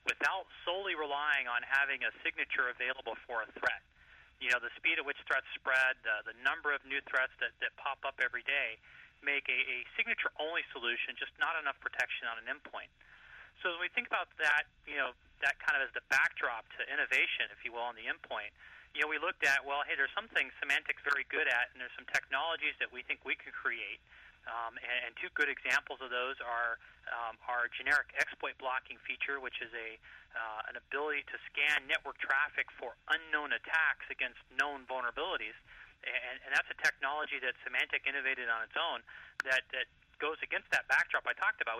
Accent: American